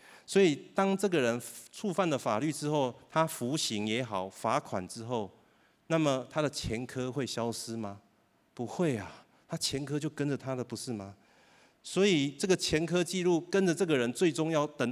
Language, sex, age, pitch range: Chinese, male, 30-49, 105-145 Hz